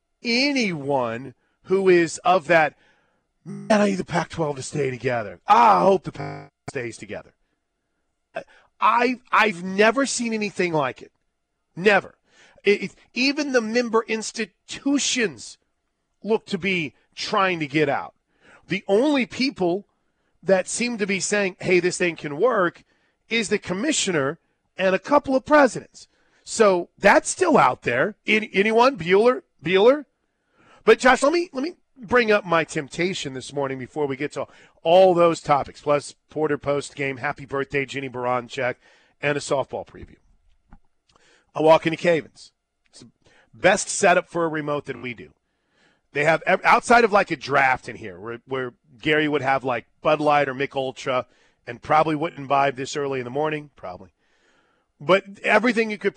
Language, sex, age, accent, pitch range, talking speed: English, male, 40-59, American, 140-210 Hz, 155 wpm